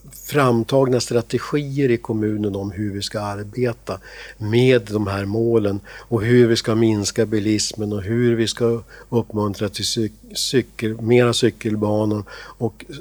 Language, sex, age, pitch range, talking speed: Swedish, male, 60-79, 105-125 Hz, 135 wpm